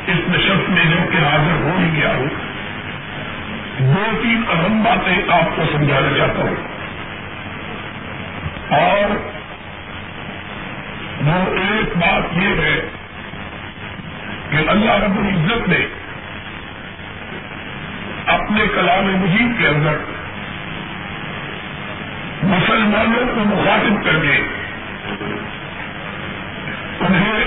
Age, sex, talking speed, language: 50-69, male, 80 wpm, Urdu